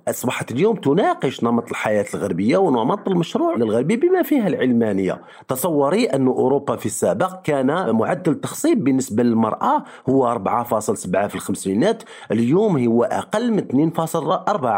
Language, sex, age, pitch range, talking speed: Arabic, male, 50-69, 125-185 Hz, 125 wpm